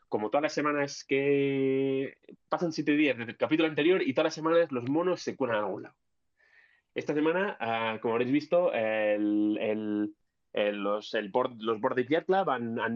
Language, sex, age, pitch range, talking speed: Spanish, male, 20-39, 115-145 Hz, 170 wpm